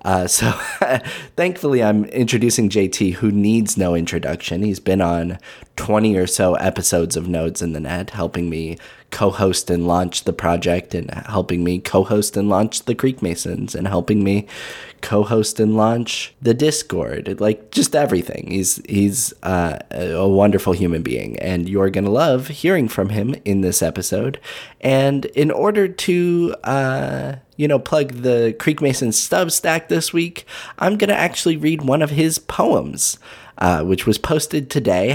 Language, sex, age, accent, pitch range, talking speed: English, male, 20-39, American, 95-140 Hz, 160 wpm